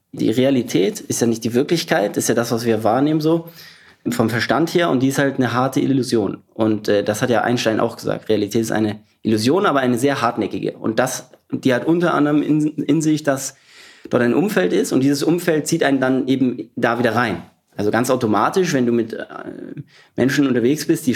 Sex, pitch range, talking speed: male, 120-150 Hz, 215 wpm